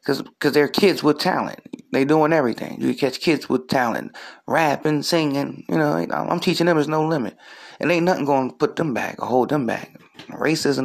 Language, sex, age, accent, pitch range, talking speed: English, male, 30-49, American, 115-155 Hz, 205 wpm